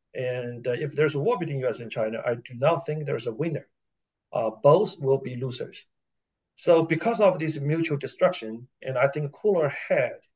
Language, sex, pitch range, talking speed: English, male, 125-150 Hz, 190 wpm